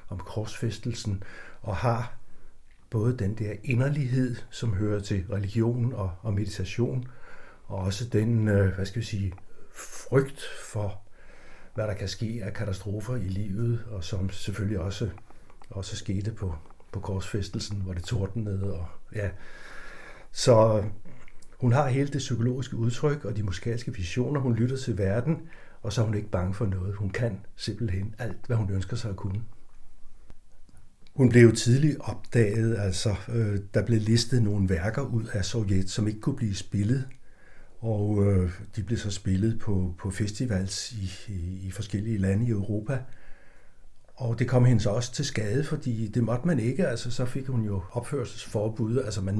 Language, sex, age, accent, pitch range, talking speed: Danish, male, 60-79, native, 100-120 Hz, 160 wpm